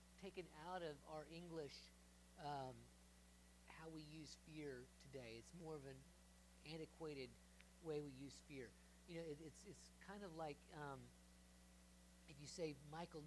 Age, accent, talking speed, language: 40-59, American, 135 wpm, English